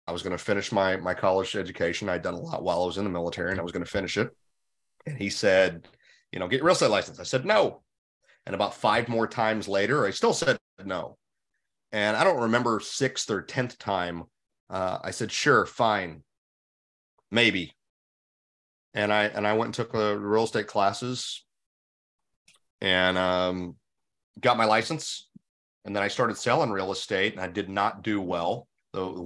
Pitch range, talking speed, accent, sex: 90-105 Hz, 190 wpm, American, male